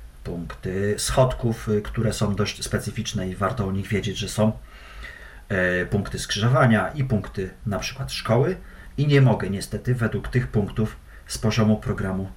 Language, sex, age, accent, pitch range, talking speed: Polish, male, 40-59, native, 95-120 Hz, 145 wpm